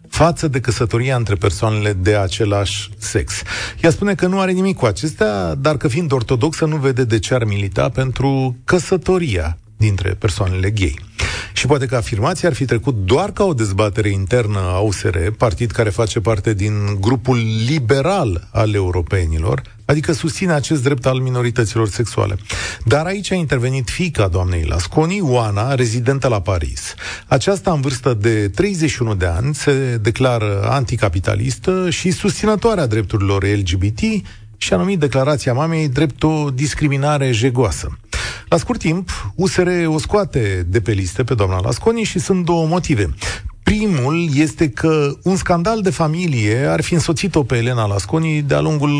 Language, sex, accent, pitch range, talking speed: Romanian, male, native, 105-155 Hz, 155 wpm